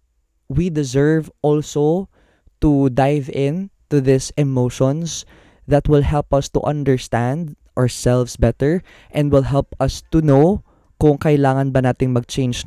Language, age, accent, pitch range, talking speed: Filipino, 20-39, native, 125-145 Hz, 135 wpm